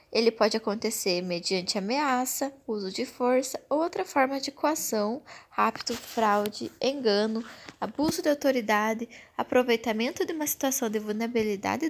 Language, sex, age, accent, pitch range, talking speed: Portuguese, female, 10-29, Brazilian, 220-275 Hz, 125 wpm